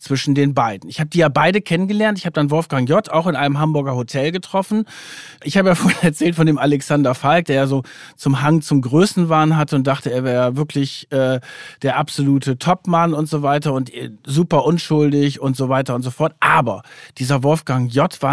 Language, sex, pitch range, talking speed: German, male, 140-175 Hz, 205 wpm